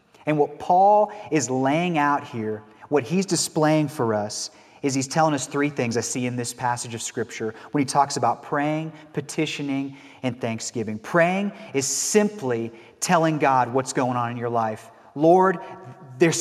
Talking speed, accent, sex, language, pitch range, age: 170 wpm, American, male, English, 125-165 Hz, 30-49